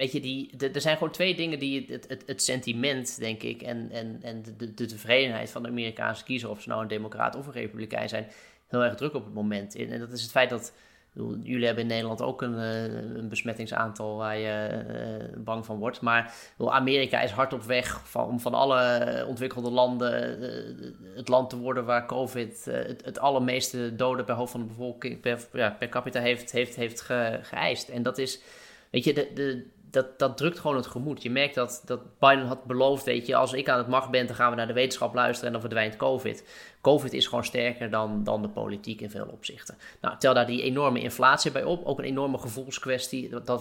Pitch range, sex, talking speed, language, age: 115-130 Hz, male, 210 wpm, Dutch, 20-39